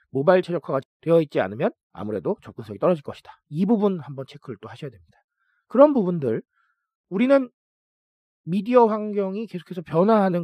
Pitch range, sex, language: 120-195 Hz, male, Korean